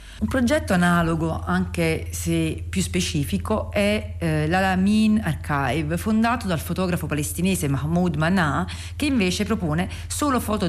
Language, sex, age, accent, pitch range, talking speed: Italian, female, 40-59, native, 140-195 Hz, 125 wpm